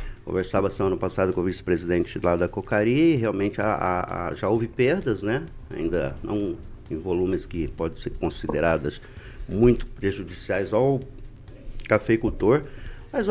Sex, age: male, 50-69